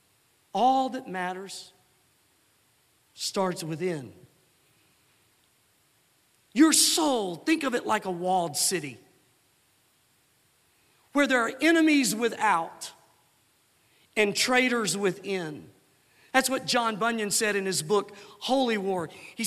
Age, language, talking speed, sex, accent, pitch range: 50-69, English, 100 wpm, male, American, 215-285 Hz